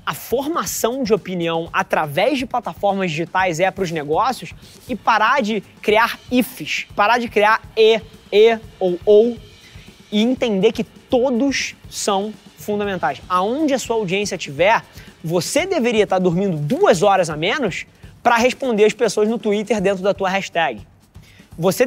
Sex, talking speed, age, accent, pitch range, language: male, 150 wpm, 20-39, Brazilian, 185-235 Hz, Portuguese